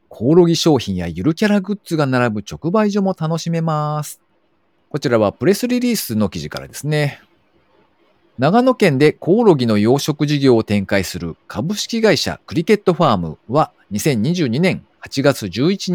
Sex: male